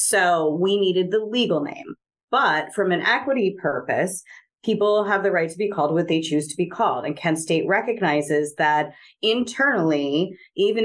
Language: English